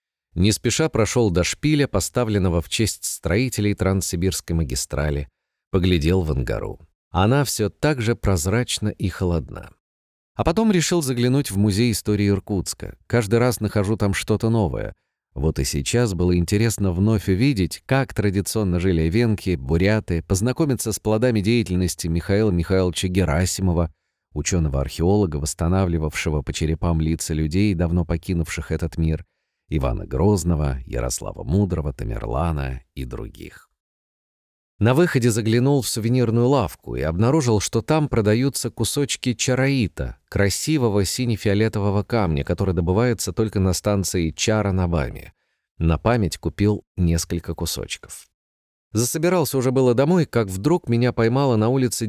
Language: Russian